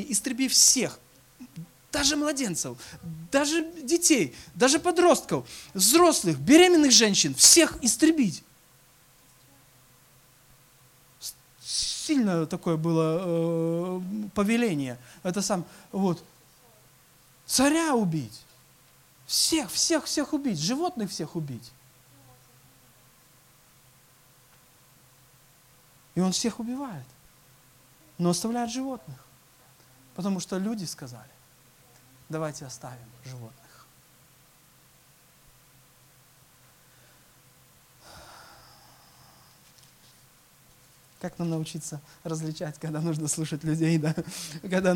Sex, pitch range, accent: male, 130-190 Hz, native